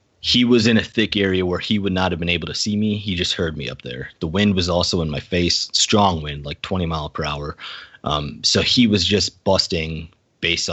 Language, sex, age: English, male, 30-49